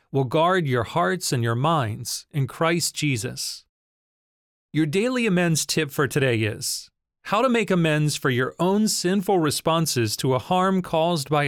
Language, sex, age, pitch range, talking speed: English, male, 40-59, 130-170 Hz, 160 wpm